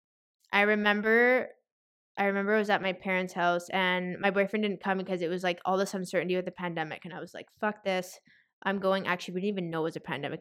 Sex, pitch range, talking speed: female, 175-200 Hz, 240 wpm